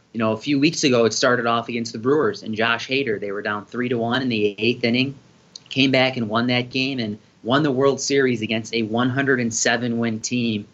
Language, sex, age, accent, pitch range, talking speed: English, male, 30-49, American, 110-130 Hz, 225 wpm